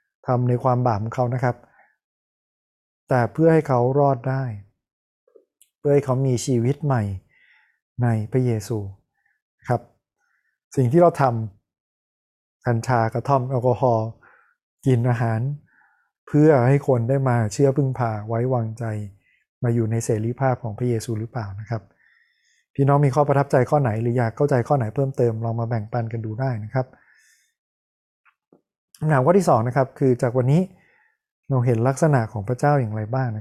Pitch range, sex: 115-140 Hz, male